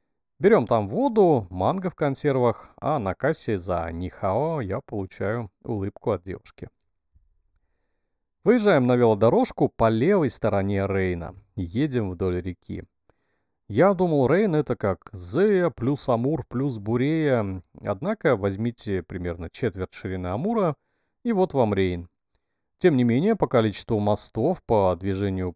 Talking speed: 125 wpm